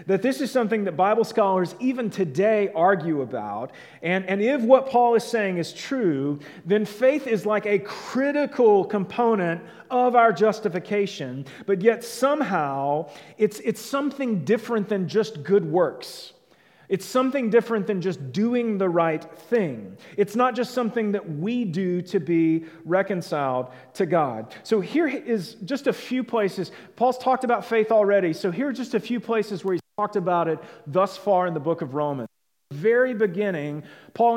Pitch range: 175-230 Hz